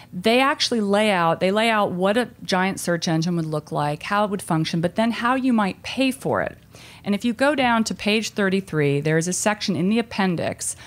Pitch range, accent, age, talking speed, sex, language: 160-205 Hz, American, 40-59, 230 wpm, female, English